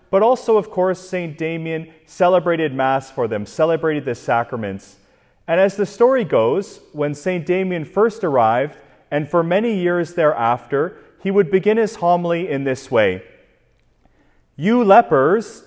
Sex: male